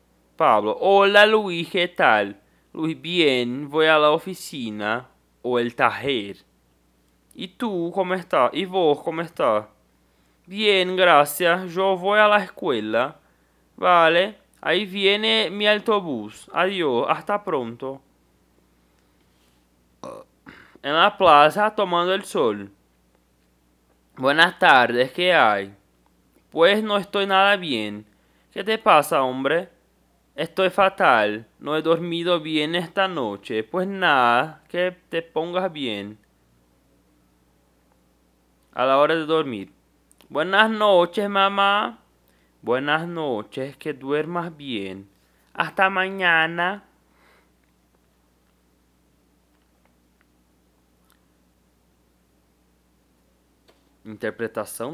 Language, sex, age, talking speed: Portuguese, male, 20-39, 95 wpm